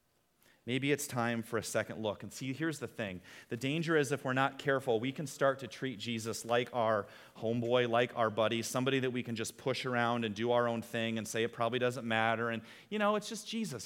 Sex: male